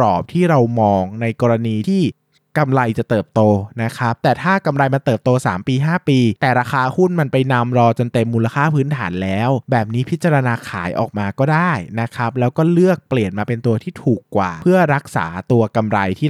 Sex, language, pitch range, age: male, Thai, 115-155 Hz, 20-39